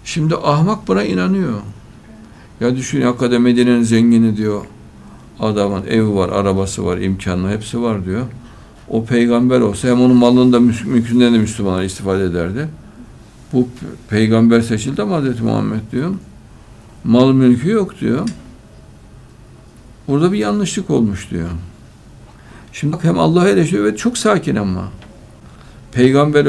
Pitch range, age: 100-140 Hz, 60-79